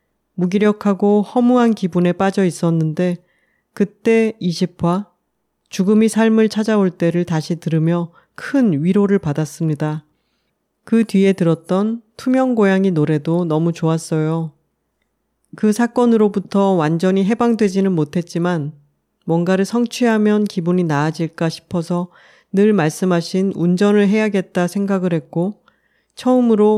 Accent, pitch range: native, 165-210 Hz